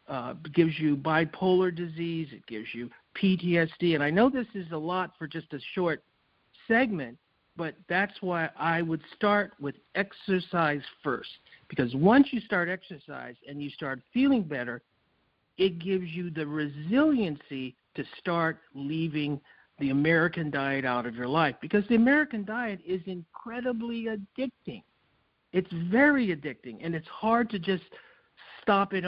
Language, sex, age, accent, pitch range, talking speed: English, male, 50-69, American, 150-200 Hz, 150 wpm